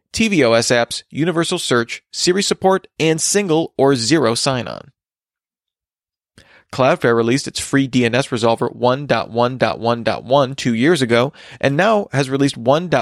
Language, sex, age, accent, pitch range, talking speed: English, male, 30-49, American, 120-155 Hz, 115 wpm